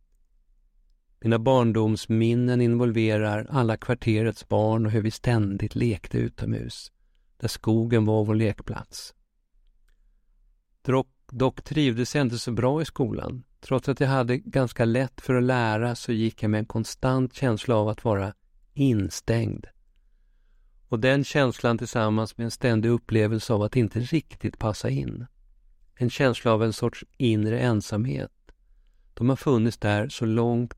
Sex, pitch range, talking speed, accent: male, 105-125 Hz, 140 wpm, native